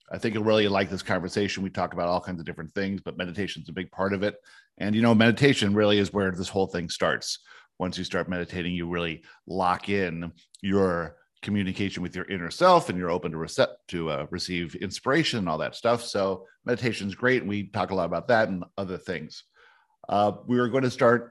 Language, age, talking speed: English, 50-69, 220 wpm